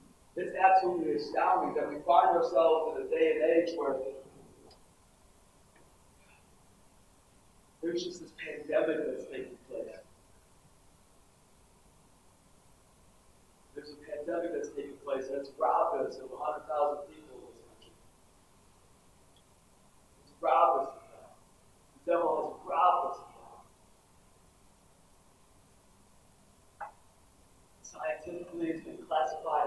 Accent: American